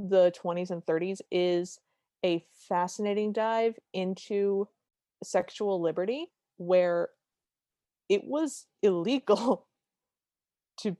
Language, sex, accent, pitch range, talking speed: English, female, American, 175-205 Hz, 85 wpm